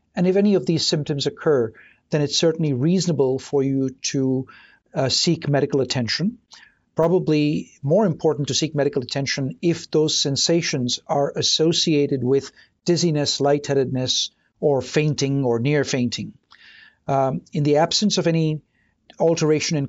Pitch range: 135-170 Hz